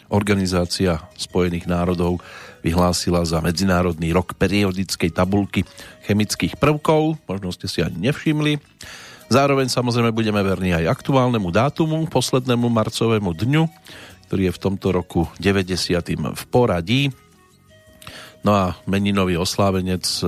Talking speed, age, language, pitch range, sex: 110 wpm, 40-59, Slovak, 90-115 Hz, male